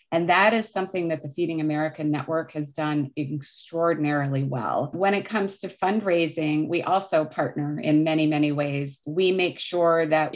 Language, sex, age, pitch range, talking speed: English, female, 30-49, 155-185 Hz, 170 wpm